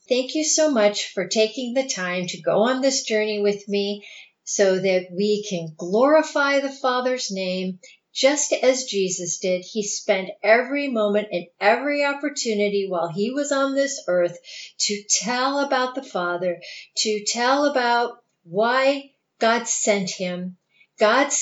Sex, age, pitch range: female, 50-69, 195-265 Hz